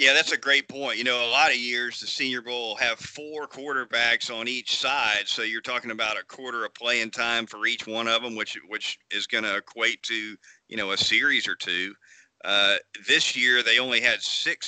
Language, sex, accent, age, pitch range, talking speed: English, male, American, 40-59, 105-120 Hz, 220 wpm